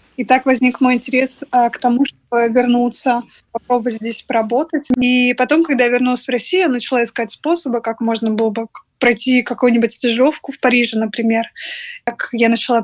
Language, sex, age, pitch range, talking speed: Russian, female, 20-39, 235-255 Hz, 165 wpm